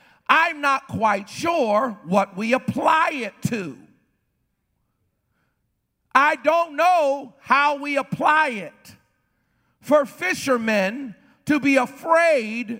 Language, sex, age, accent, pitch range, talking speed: English, male, 50-69, American, 195-275 Hz, 100 wpm